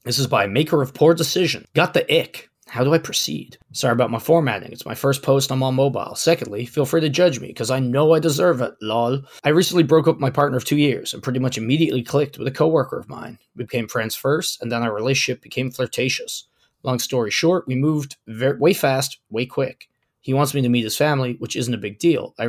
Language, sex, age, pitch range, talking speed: English, male, 20-39, 120-145 Hz, 245 wpm